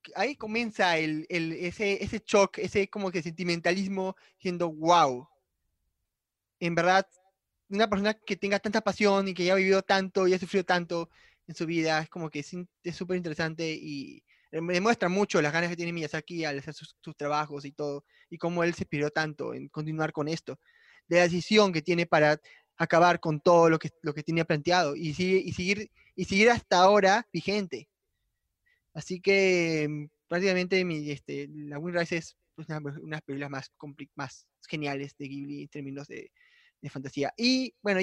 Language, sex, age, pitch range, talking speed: Spanish, male, 20-39, 155-195 Hz, 180 wpm